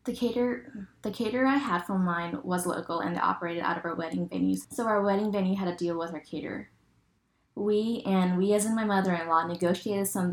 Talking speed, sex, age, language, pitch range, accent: 215 wpm, female, 10-29, English, 170-200 Hz, American